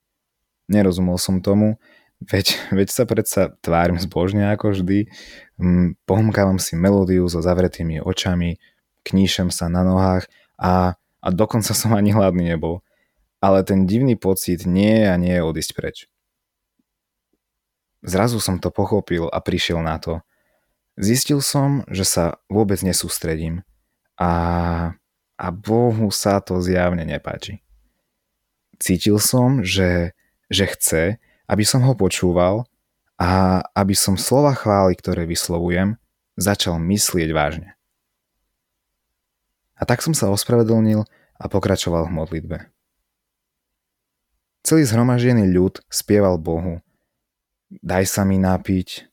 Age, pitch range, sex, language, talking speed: 20-39, 90-105 Hz, male, Slovak, 120 wpm